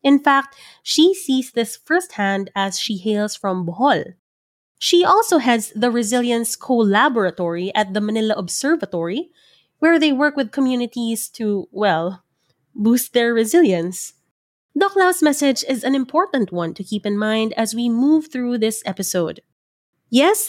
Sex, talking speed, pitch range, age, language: female, 140 wpm, 205-300 Hz, 20-39, English